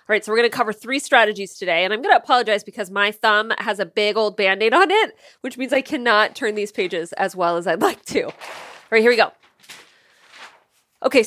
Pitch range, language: 200-255 Hz, English